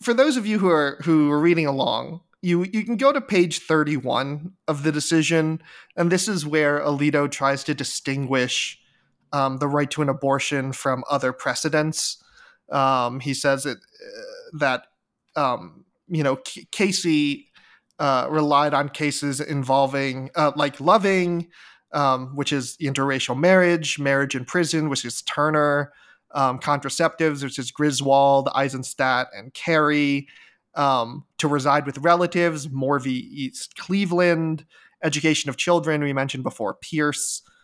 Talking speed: 145 wpm